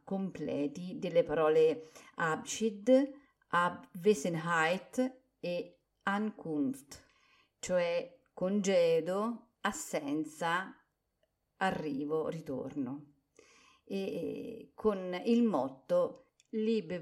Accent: native